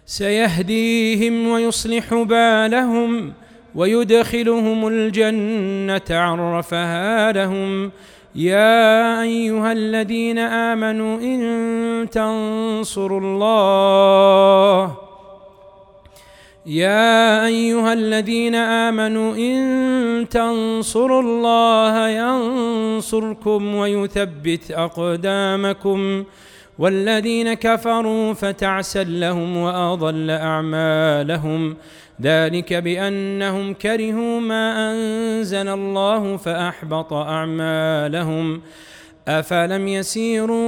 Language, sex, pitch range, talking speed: Arabic, male, 195-230 Hz, 60 wpm